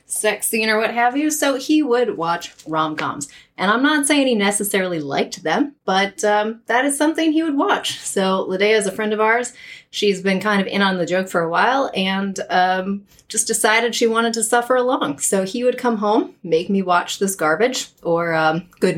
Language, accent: English, American